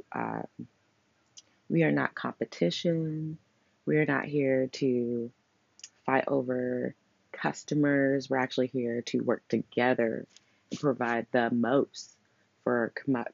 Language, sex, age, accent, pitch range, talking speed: English, female, 20-39, American, 115-135 Hz, 110 wpm